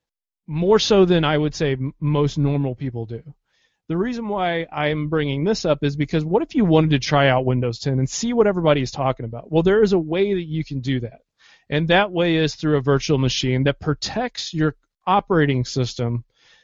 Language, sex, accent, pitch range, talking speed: English, male, American, 140-170 Hz, 210 wpm